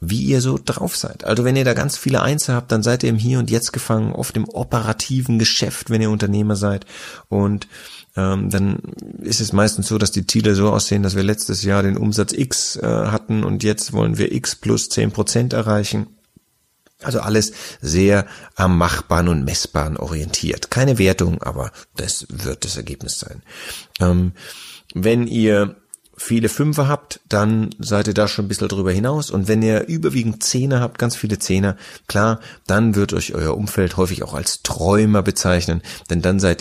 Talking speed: 185 wpm